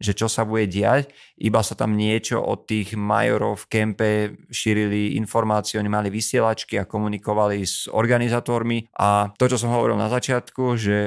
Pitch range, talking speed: 105-120 Hz, 170 wpm